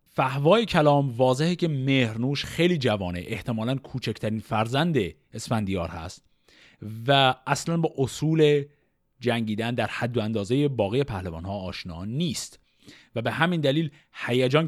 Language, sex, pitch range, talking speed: Persian, male, 110-155 Hz, 125 wpm